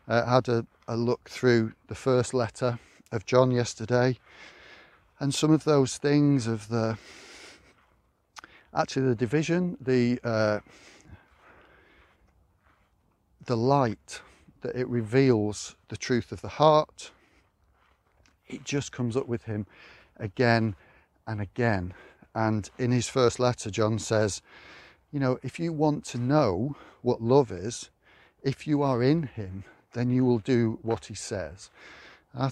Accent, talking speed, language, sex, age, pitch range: British, 135 wpm, English, male, 40-59, 105-130 Hz